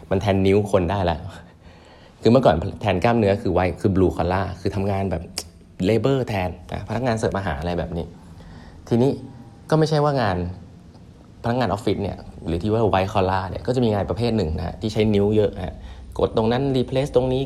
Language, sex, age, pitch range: Thai, male, 20-39, 85-105 Hz